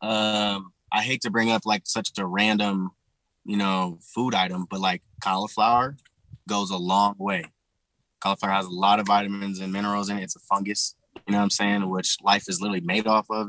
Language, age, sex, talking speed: English, 20-39, male, 205 wpm